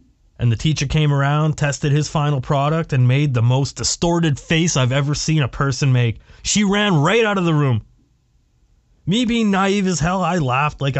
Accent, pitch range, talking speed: American, 120-155 Hz, 195 wpm